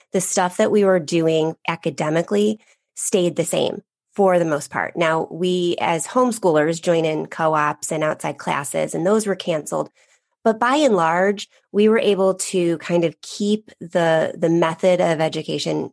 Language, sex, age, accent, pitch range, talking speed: English, female, 30-49, American, 160-185 Hz, 165 wpm